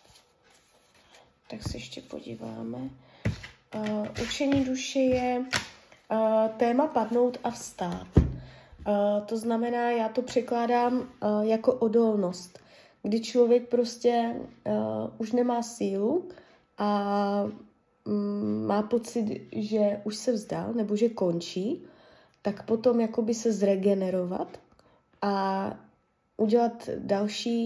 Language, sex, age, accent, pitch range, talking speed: Czech, female, 20-39, native, 200-240 Hz, 90 wpm